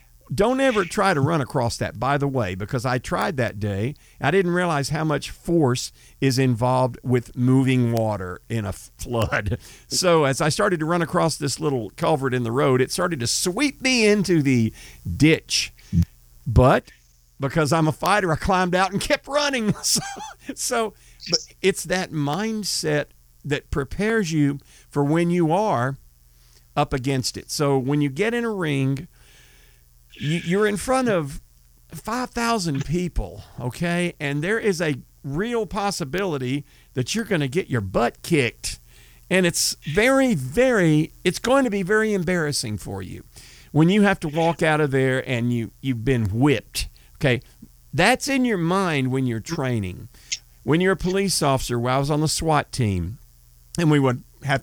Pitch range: 120-180 Hz